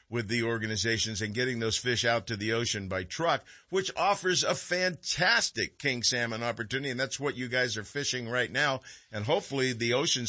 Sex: male